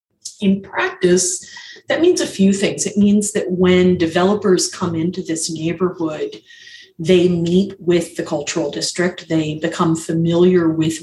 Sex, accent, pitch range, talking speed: female, American, 165-195 Hz, 140 wpm